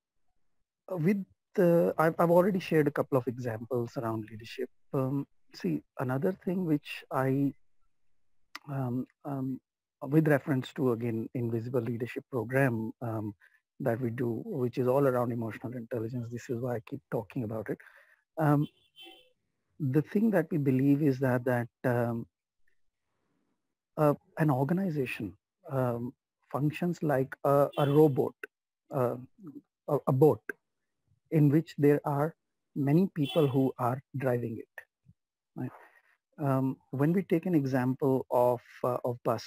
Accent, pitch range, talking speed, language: Indian, 125-150 Hz, 135 wpm, English